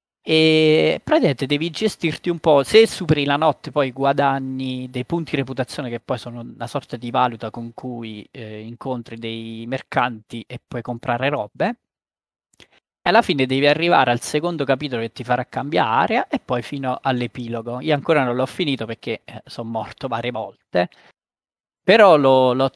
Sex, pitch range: male, 120-145 Hz